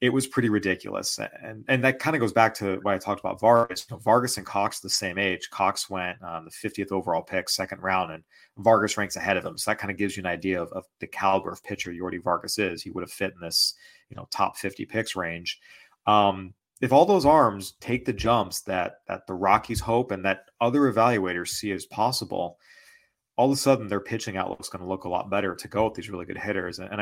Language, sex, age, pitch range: English, male, 30-49, 90-110 Hz